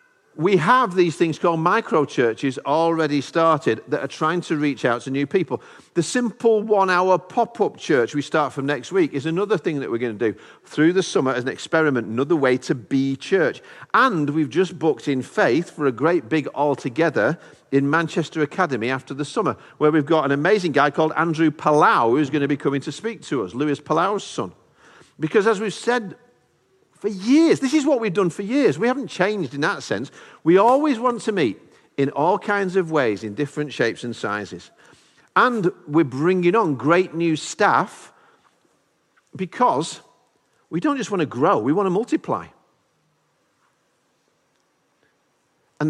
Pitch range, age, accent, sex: 145-200 Hz, 50-69, British, male